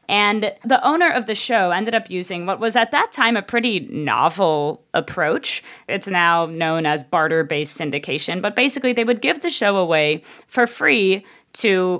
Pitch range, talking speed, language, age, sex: 155-210 Hz, 175 wpm, English, 20-39, female